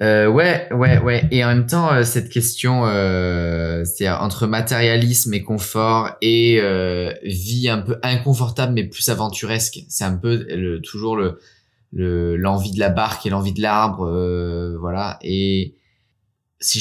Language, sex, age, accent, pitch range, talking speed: French, male, 20-39, French, 90-115 Hz, 160 wpm